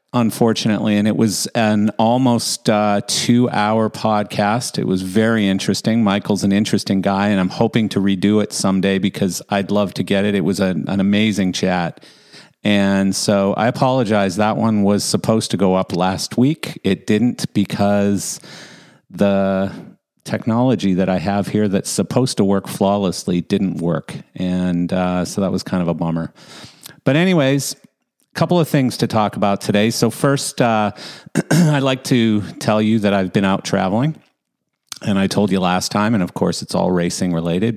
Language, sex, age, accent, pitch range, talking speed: English, male, 40-59, American, 95-115 Hz, 175 wpm